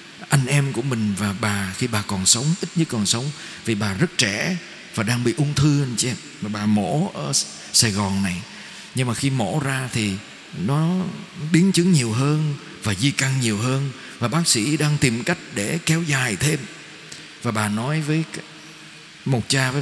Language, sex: Vietnamese, male